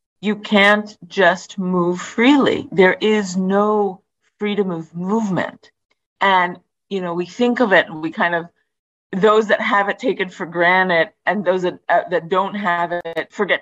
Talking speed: 165 wpm